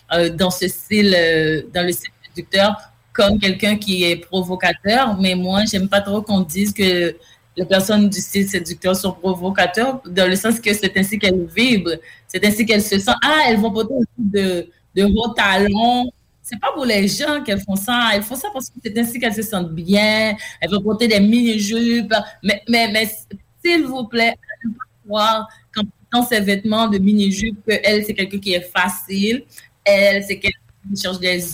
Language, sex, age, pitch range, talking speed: English, female, 30-49, 185-225 Hz, 195 wpm